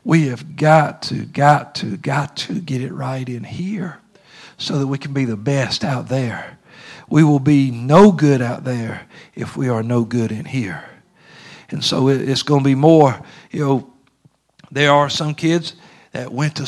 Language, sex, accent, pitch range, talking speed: English, male, American, 135-170 Hz, 185 wpm